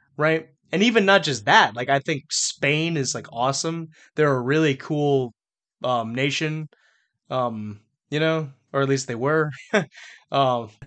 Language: English